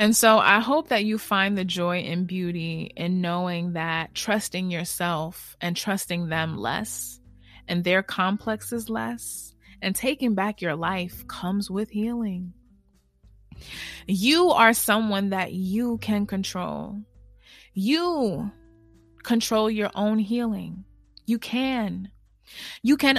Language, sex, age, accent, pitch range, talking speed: English, female, 20-39, American, 175-245 Hz, 125 wpm